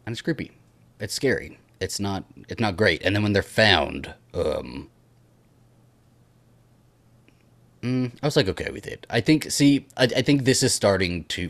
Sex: male